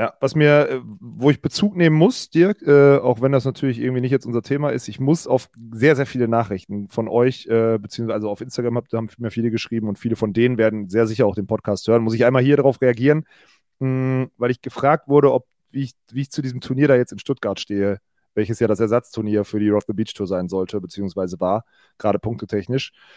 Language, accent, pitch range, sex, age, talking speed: German, German, 110-135 Hz, male, 30-49, 220 wpm